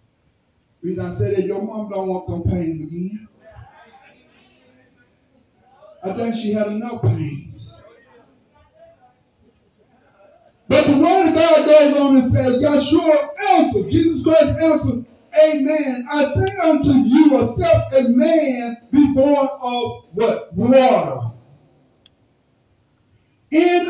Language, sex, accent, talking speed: English, male, American, 110 wpm